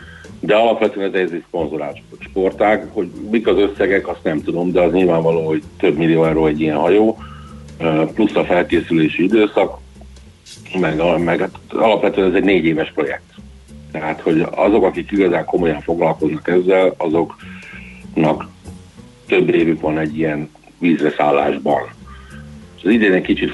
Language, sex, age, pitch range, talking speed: Hungarian, male, 60-79, 75-90 Hz, 145 wpm